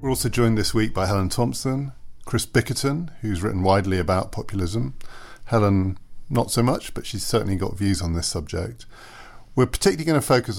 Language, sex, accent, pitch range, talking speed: English, male, British, 95-115 Hz, 180 wpm